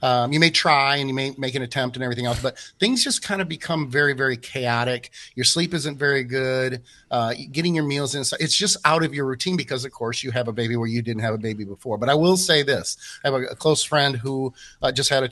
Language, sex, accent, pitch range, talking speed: English, male, American, 125-150 Hz, 265 wpm